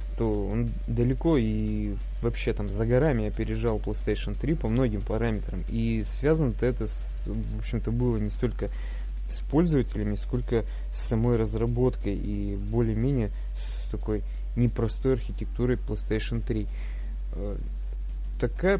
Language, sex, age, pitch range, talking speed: Russian, male, 20-39, 105-125 Hz, 120 wpm